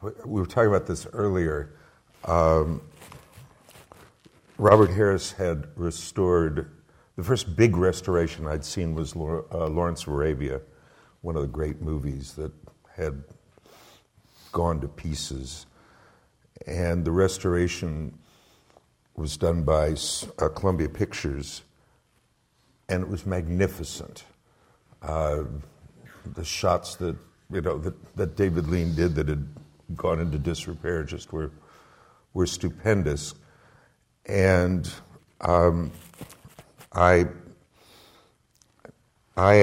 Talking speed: 100 wpm